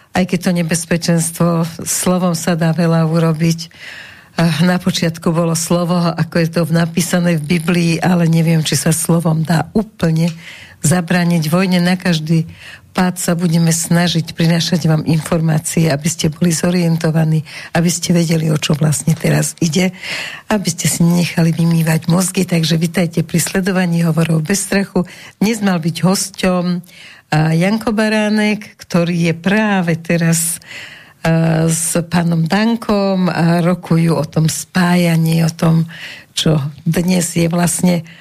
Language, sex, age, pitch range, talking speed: Slovak, female, 60-79, 165-185 Hz, 140 wpm